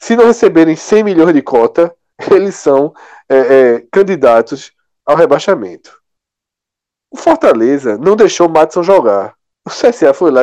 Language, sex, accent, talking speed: Portuguese, male, Brazilian, 130 wpm